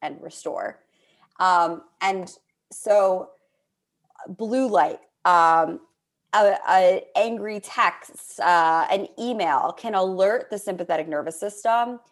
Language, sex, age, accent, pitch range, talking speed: English, female, 20-39, American, 165-205 Hz, 105 wpm